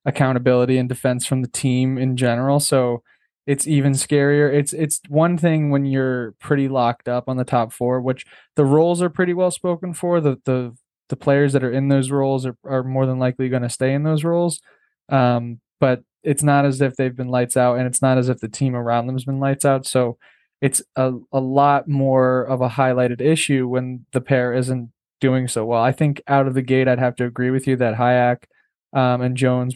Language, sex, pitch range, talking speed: English, male, 125-140 Hz, 220 wpm